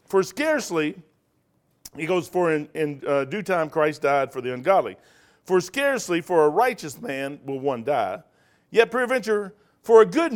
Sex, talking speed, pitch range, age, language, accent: male, 170 wpm, 145-200 Hz, 50-69, English, American